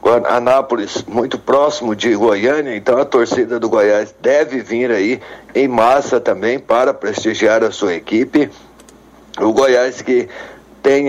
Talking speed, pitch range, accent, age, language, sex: 135 wpm, 110-145 Hz, Brazilian, 60-79, Portuguese, male